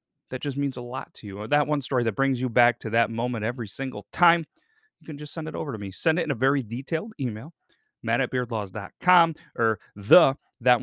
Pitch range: 110-155 Hz